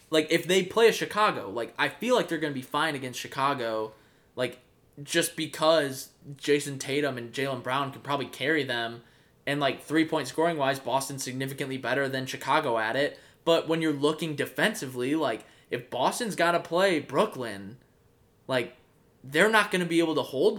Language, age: English, 20-39